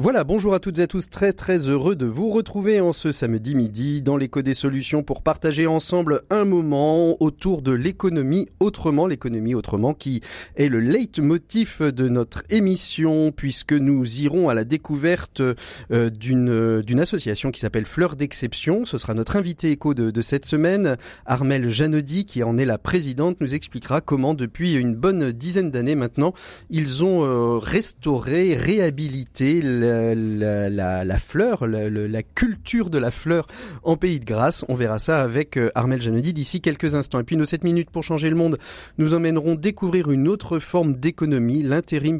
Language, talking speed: French, 175 wpm